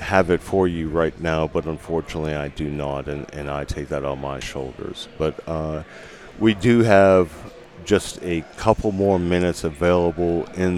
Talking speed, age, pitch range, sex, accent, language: 175 wpm, 40-59, 80-100 Hz, male, American, English